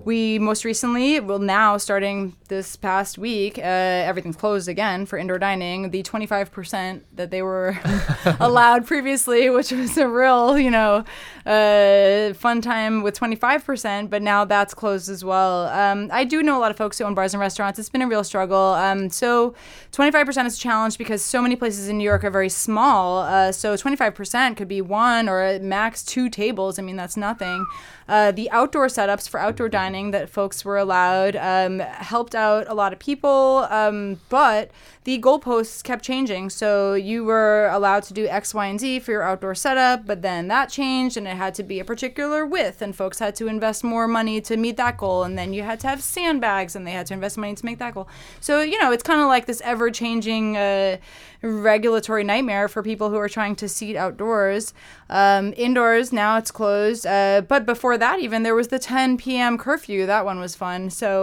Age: 20-39